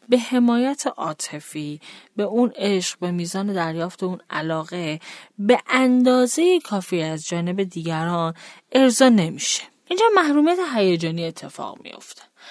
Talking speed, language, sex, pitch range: 120 wpm, Persian, female, 165-255 Hz